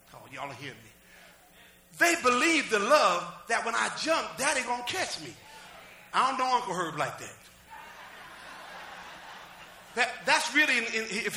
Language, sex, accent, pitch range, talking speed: English, male, American, 215-285 Hz, 155 wpm